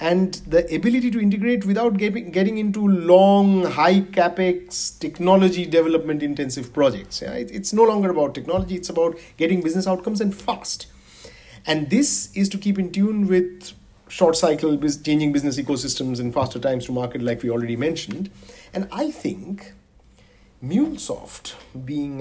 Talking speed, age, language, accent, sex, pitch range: 150 wpm, 50-69, English, Indian, male, 135-190 Hz